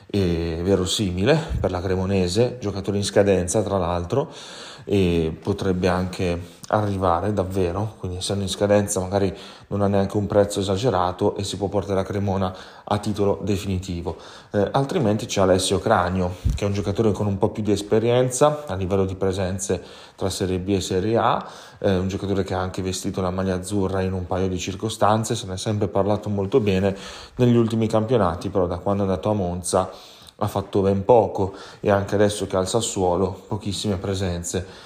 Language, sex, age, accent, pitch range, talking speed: Italian, male, 30-49, native, 95-105 Hz, 180 wpm